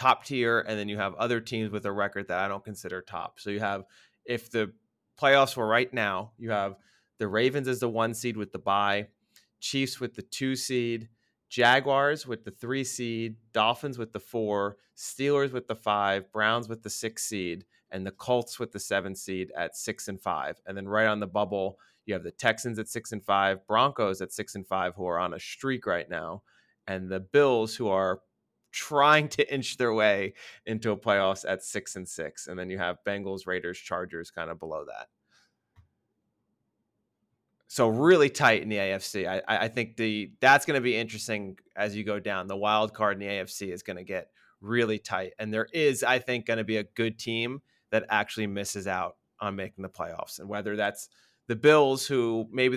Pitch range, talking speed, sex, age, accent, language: 100-120 Hz, 205 wpm, male, 30-49, American, English